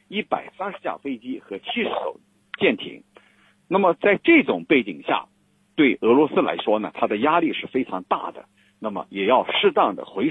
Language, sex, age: Chinese, male, 50-69